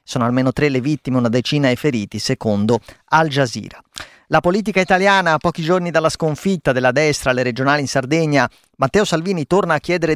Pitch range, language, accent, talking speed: 120-155 Hz, Italian, native, 185 wpm